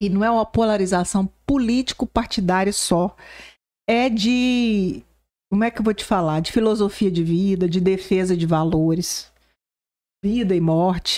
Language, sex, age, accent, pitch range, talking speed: Portuguese, female, 50-69, Brazilian, 170-235 Hz, 145 wpm